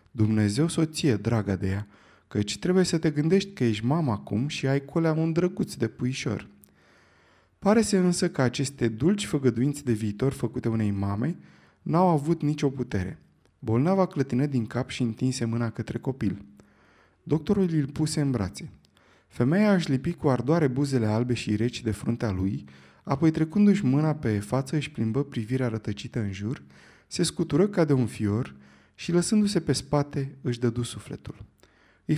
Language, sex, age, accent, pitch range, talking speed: Romanian, male, 20-39, native, 105-145 Hz, 165 wpm